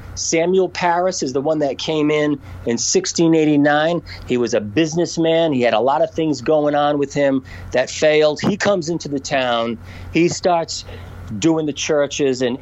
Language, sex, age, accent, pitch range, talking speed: English, male, 40-59, American, 115-165 Hz, 175 wpm